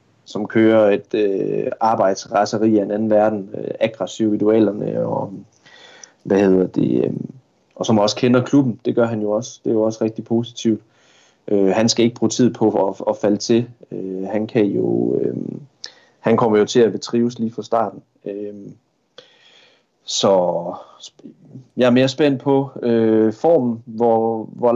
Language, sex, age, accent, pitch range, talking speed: Danish, male, 30-49, native, 105-120 Hz, 160 wpm